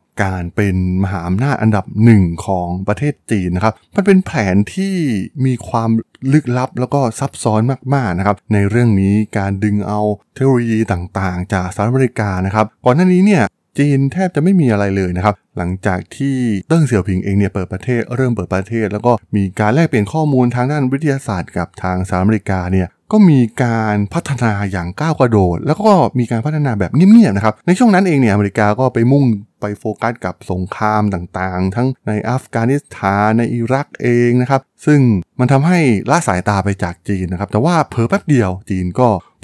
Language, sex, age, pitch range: Thai, male, 20-39, 95-135 Hz